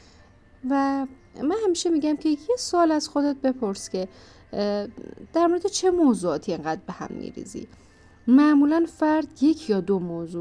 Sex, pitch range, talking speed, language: female, 185-265 Hz, 145 wpm, Persian